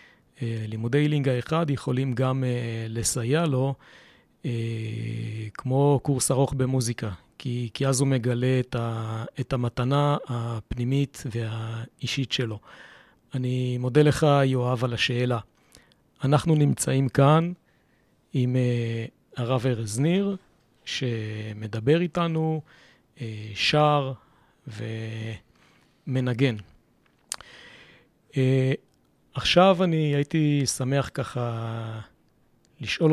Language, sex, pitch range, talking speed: Hebrew, male, 120-140 Hz, 90 wpm